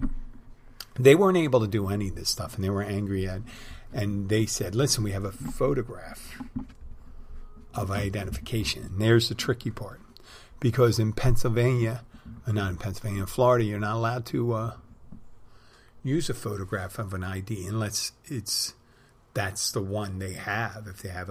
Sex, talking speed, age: male, 165 wpm, 50-69